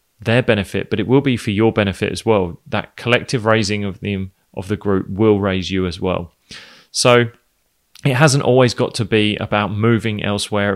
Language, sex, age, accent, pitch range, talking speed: English, male, 20-39, British, 100-115 Hz, 190 wpm